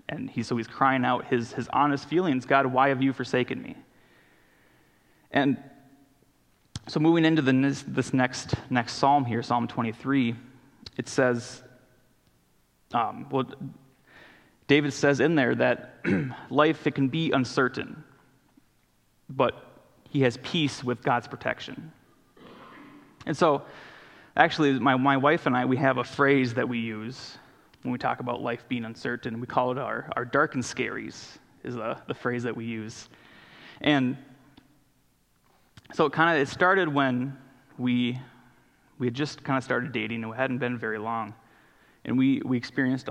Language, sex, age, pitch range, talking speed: English, male, 20-39, 120-135 Hz, 155 wpm